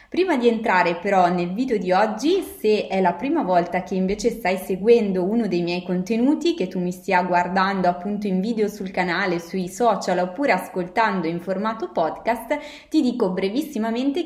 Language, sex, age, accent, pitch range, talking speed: Italian, female, 20-39, native, 180-235 Hz, 175 wpm